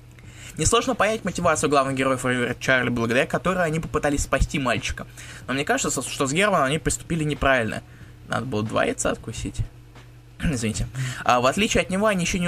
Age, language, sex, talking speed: 20-39, Russian, male, 170 wpm